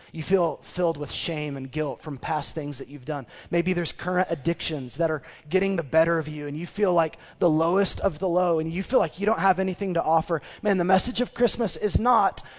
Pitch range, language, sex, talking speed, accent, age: 140-185 Hz, English, male, 240 wpm, American, 20-39